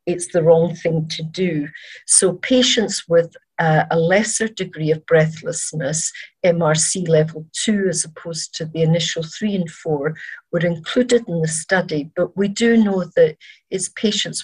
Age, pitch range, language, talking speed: 50-69, 160-195 Hz, English, 155 wpm